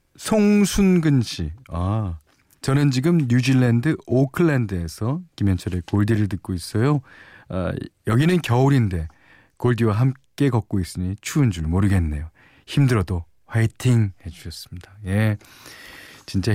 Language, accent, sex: Korean, native, male